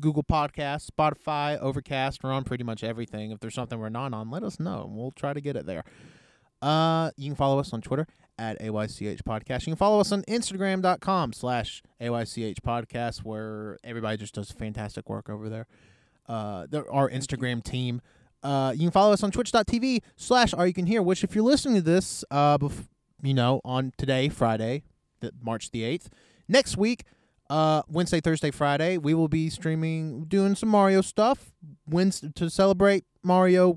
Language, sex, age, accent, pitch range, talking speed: English, male, 20-39, American, 125-175 Hz, 185 wpm